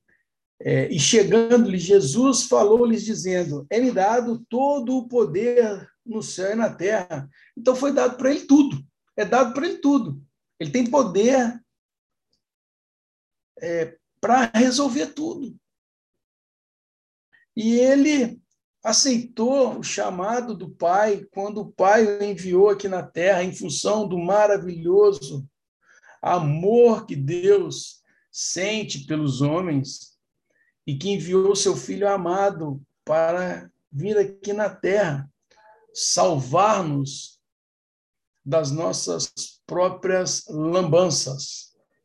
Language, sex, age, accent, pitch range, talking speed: Portuguese, male, 60-79, Brazilian, 160-230 Hz, 110 wpm